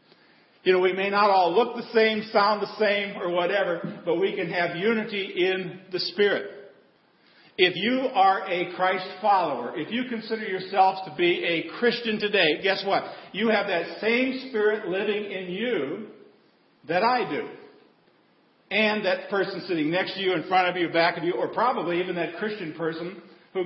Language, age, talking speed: English, 50-69, 180 wpm